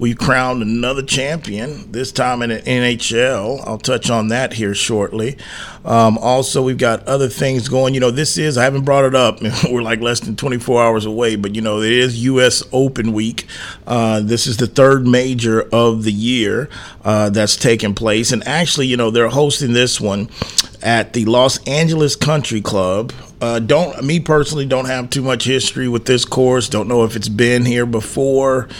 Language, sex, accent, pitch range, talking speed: English, male, American, 105-125 Hz, 190 wpm